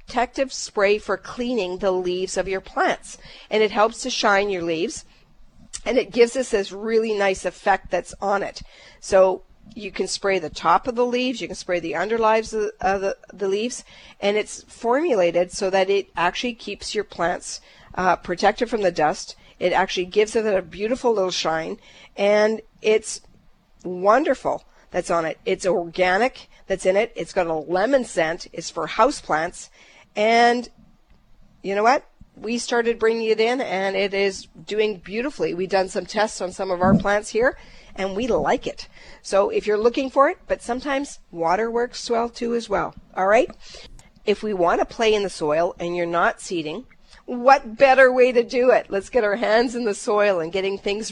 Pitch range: 185-235 Hz